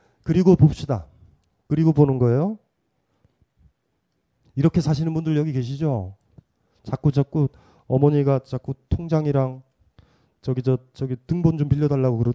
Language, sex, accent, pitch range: Korean, male, native, 115-155 Hz